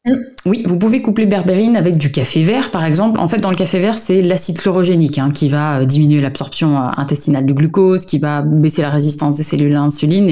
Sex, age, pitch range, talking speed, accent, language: female, 20-39, 150-190 Hz, 215 wpm, French, French